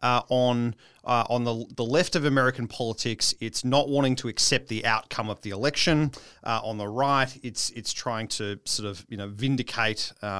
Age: 30-49